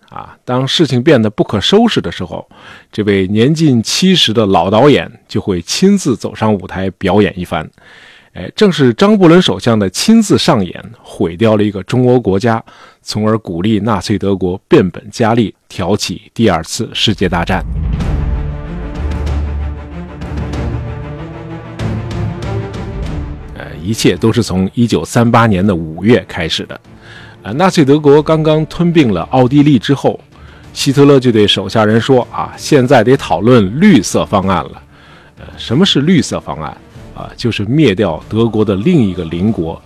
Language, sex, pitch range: Chinese, male, 95-140 Hz